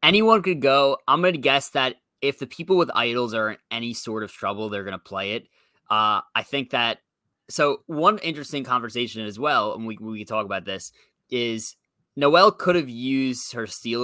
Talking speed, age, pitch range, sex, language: 205 wpm, 20-39, 115-150 Hz, male, English